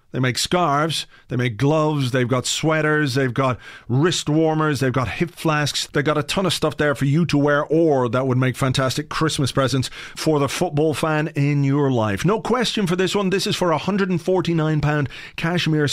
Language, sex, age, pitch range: English, male, 40-59, 135-165 Hz